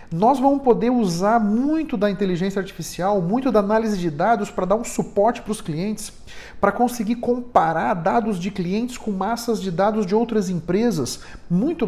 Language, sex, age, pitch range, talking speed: Portuguese, male, 40-59, 170-220 Hz, 170 wpm